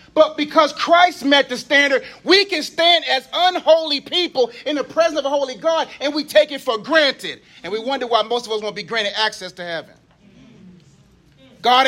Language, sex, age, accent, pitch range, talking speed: English, male, 30-49, American, 225-295 Hz, 195 wpm